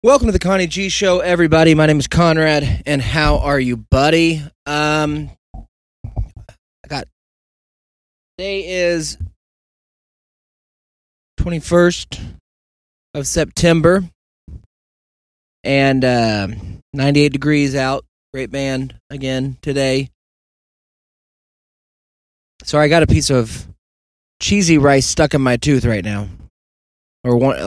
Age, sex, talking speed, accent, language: 20-39, male, 110 wpm, American, English